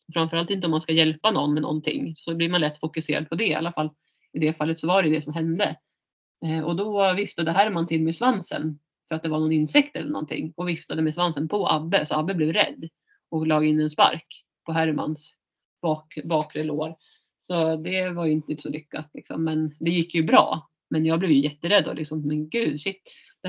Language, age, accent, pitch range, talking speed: Swedish, 30-49, native, 155-175 Hz, 225 wpm